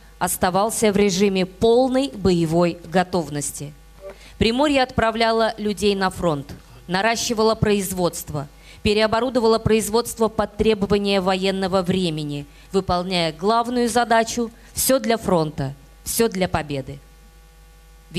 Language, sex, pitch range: Russian, female, 160-220 Hz